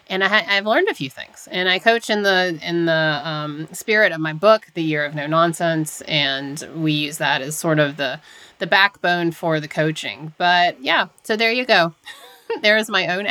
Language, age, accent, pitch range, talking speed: English, 30-49, American, 155-200 Hz, 210 wpm